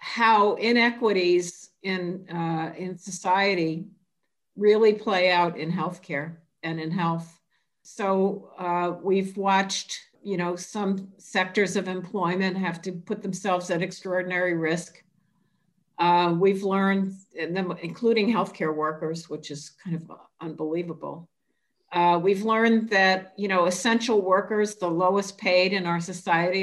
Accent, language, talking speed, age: American, English, 130 wpm, 50-69